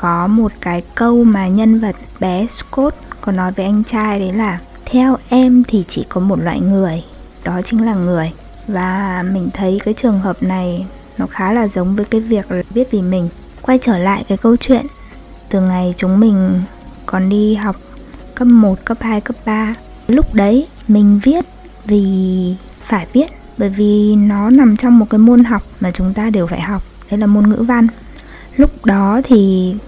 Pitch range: 195-240 Hz